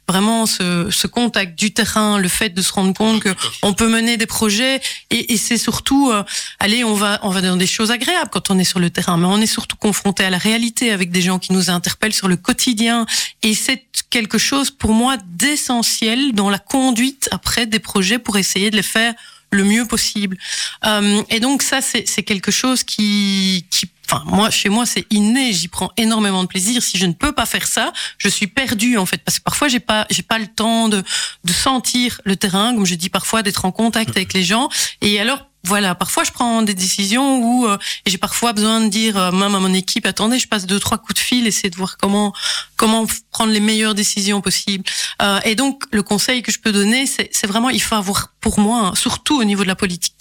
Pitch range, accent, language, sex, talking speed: 195-230 Hz, French, French, female, 235 wpm